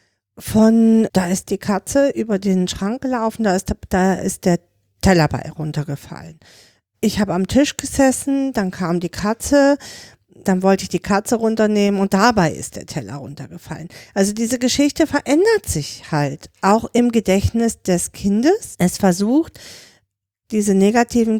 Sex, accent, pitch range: female, German, 175-245 Hz